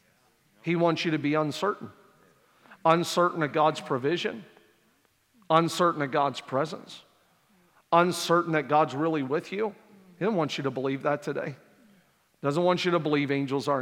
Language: English